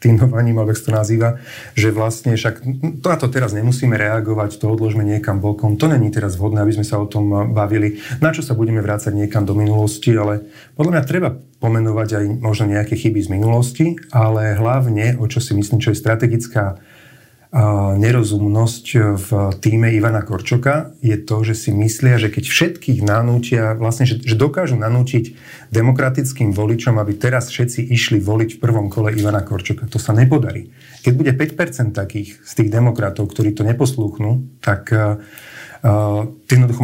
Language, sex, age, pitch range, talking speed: Slovak, male, 40-59, 110-130 Hz, 165 wpm